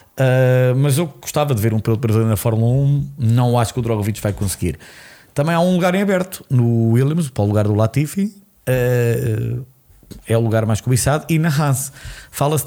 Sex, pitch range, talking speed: male, 115-145 Hz, 200 wpm